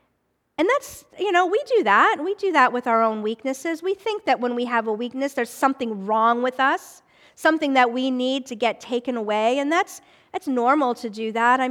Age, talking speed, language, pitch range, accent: 50-69, 220 wpm, English, 220-290 Hz, American